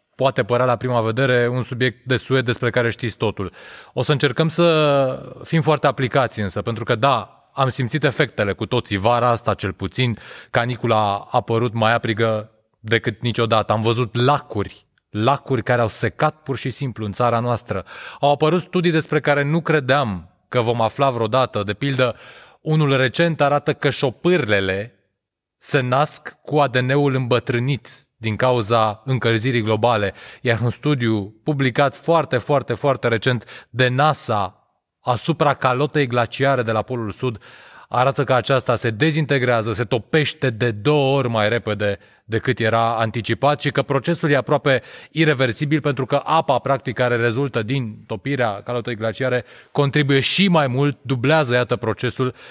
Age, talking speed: 20-39, 155 wpm